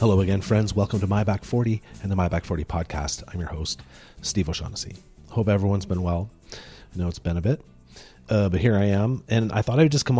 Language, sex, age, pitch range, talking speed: English, male, 30-49, 90-110 Hz, 235 wpm